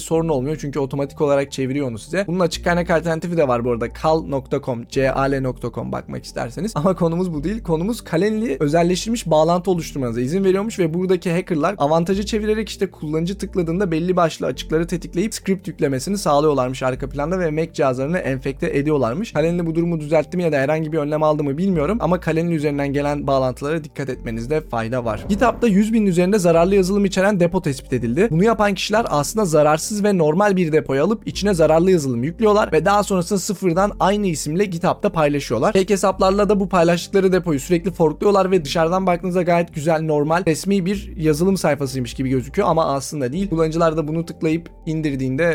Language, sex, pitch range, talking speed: Turkish, male, 145-185 Hz, 175 wpm